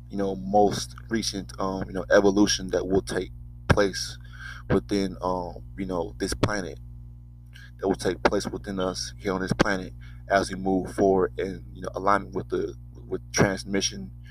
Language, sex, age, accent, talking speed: English, male, 20-39, American, 170 wpm